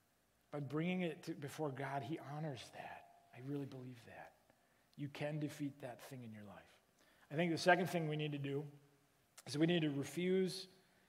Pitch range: 150-185 Hz